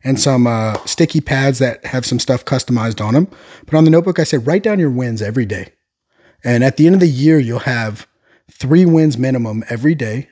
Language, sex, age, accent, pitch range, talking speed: English, male, 30-49, American, 105-135 Hz, 220 wpm